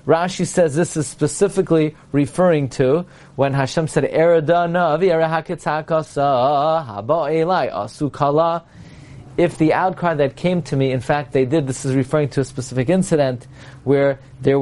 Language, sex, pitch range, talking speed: English, male, 135-165 Hz, 125 wpm